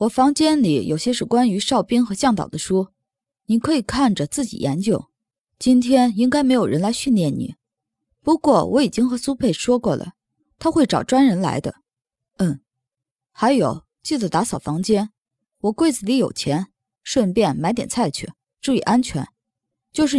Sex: female